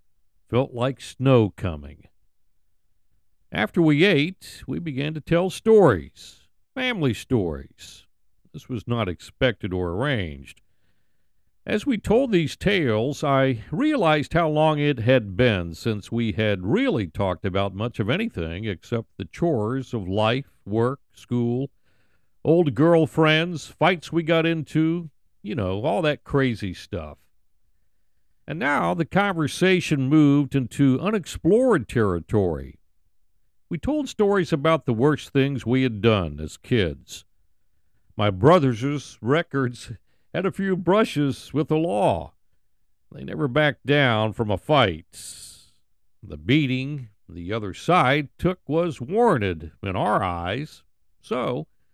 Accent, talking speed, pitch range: American, 125 wpm, 95-155 Hz